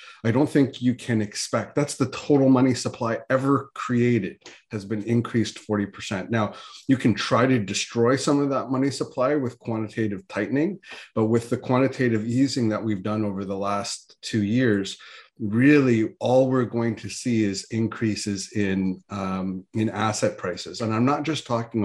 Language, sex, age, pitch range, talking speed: English, male, 30-49, 110-140 Hz, 170 wpm